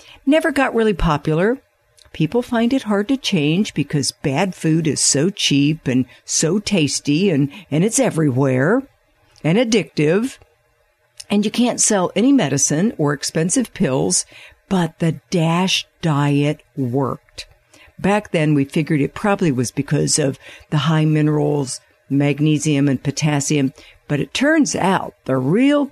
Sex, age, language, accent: female, 60-79, English, American